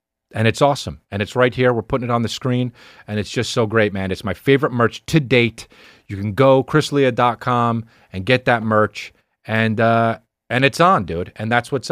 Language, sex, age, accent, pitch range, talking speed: English, male, 30-49, American, 80-115 Hz, 220 wpm